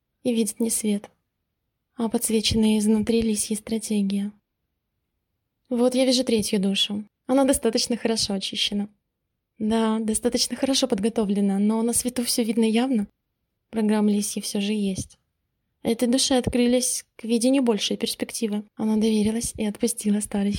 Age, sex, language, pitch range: 20-39, female, Russian, 215-245 Hz